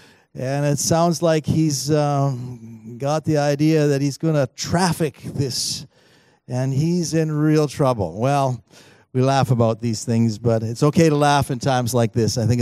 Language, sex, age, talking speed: English, male, 50-69, 175 wpm